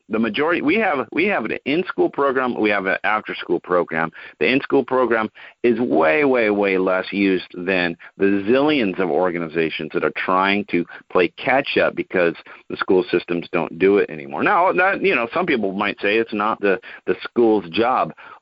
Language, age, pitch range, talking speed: English, 40-59, 90-105 Hz, 195 wpm